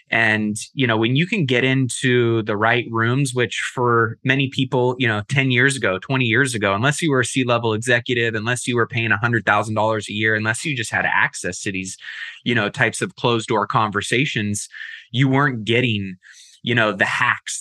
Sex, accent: male, American